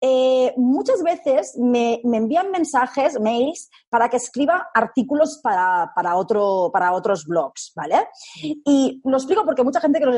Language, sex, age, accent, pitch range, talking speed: Spanish, female, 20-39, Spanish, 195-280 Hz, 160 wpm